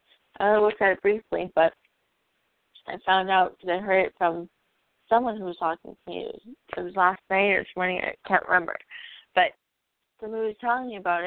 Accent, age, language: American, 20-39, English